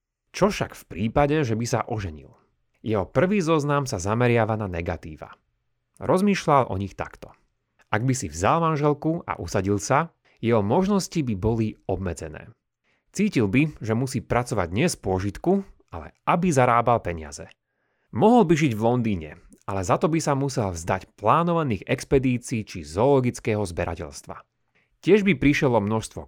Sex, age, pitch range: male, 30-49, 100-140 Hz